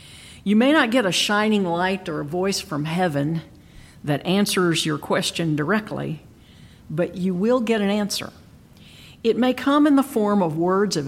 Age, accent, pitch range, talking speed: 50-69, American, 165-215 Hz, 175 wpm